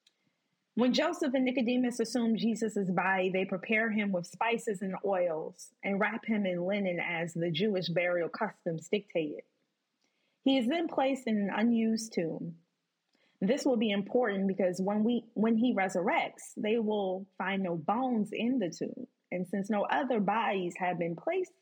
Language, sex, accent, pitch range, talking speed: English, female, American, 185-245 Hz, 160 wpm